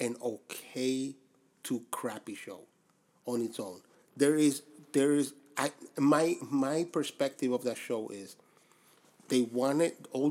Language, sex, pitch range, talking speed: English, male, 125-150 Hz, 135 wpm